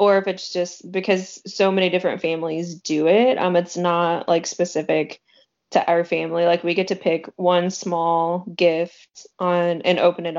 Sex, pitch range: female, 170-195 Hz